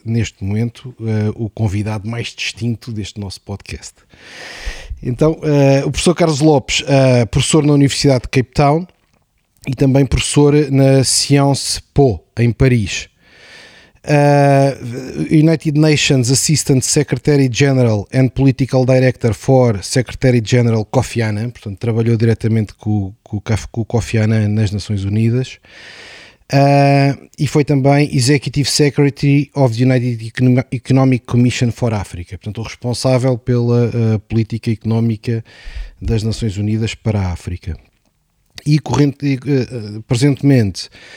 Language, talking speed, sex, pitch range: Portuguese, 120 wpm, male, 110-135 Hz